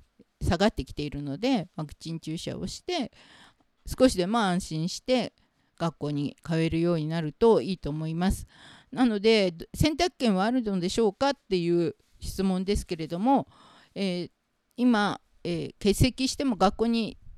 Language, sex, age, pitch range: Japanese, female, 50-69, 175-235 Hz